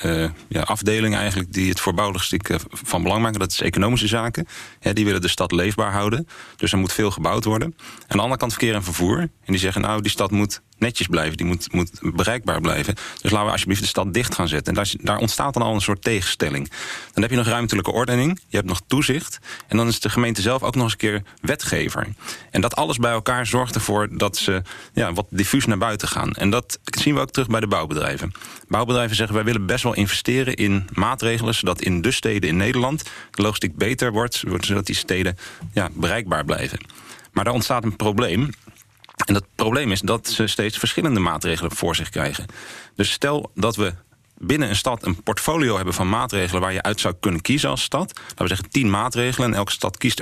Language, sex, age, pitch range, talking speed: Dutch, male, 30-49, 95-115 Hz, 220 wpm